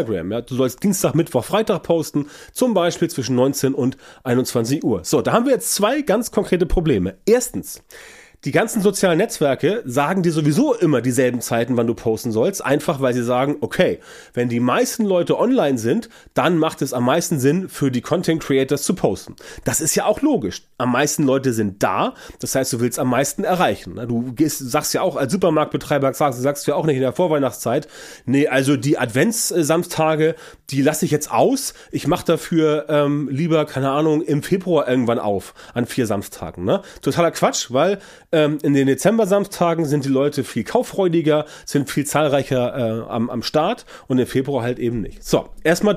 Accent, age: German, 30-49